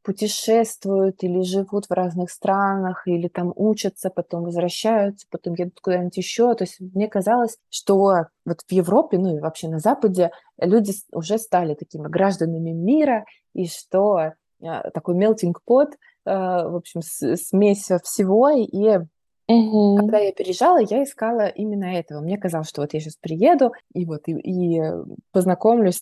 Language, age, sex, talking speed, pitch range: Russian, 20-39, female, 145 wpm, 175-220 Hz